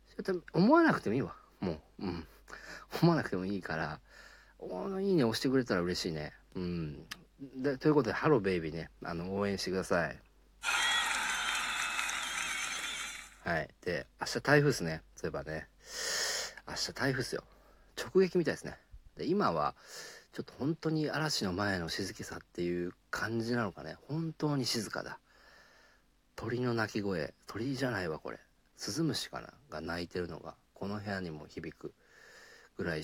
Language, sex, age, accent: Japanese, male, 50-69, native